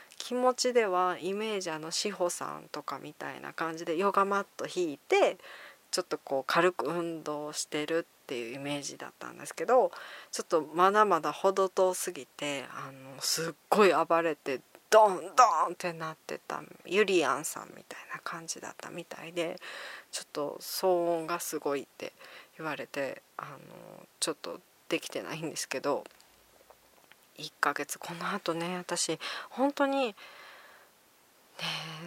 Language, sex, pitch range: Japanese, female, 160-200 Hz